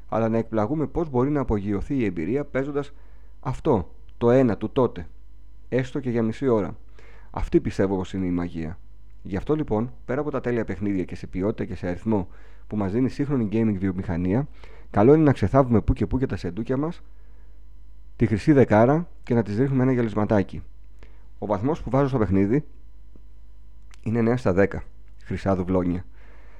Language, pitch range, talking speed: Greek, 90-125 Hz, 180 wpm